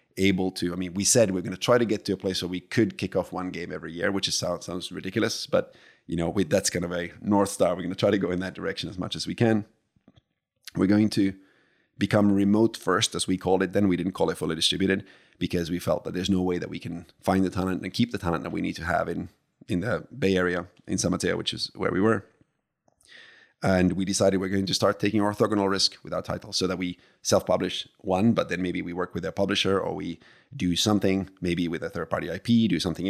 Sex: male